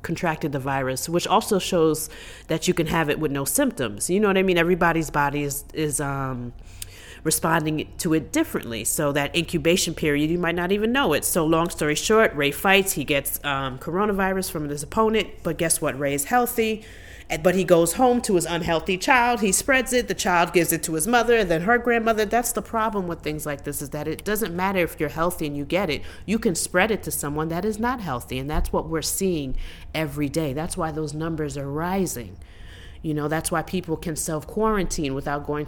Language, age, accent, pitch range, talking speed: English, 30-49, American, 150-195 Hz, 220 wpm